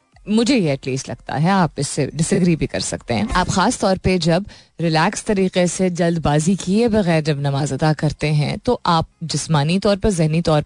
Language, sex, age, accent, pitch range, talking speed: Hindi, female, 30-49, native, 155-205 Hz, 195 wpm